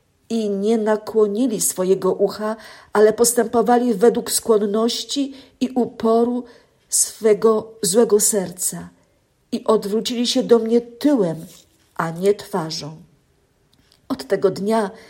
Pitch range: 195-235 Hz